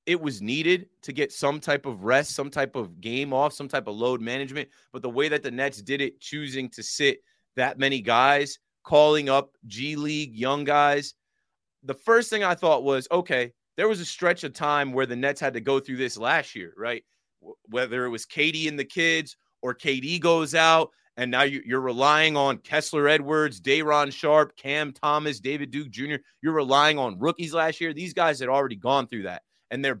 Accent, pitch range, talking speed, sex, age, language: American, 135-165 Hz, 205 wpm, male, 30-49, English